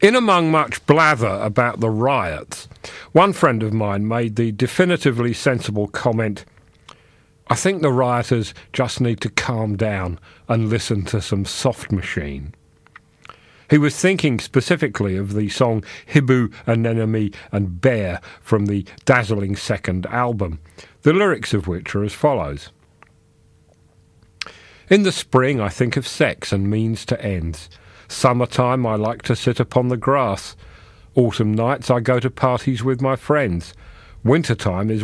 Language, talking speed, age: English, 145 wpm, 40-59